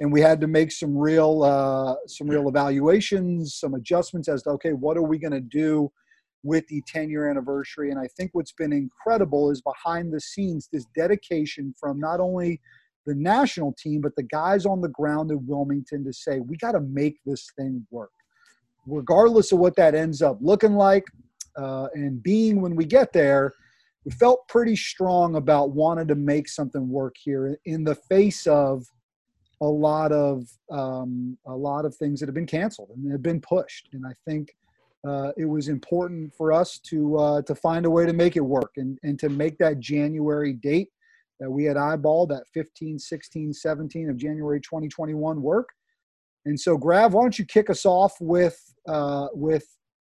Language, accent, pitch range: English, American, 140-170 Hz